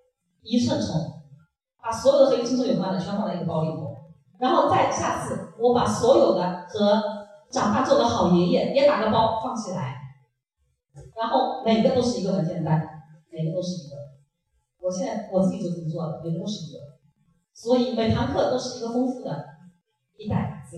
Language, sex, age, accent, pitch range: Chinese, female, 40-59, native, 150-215 Hz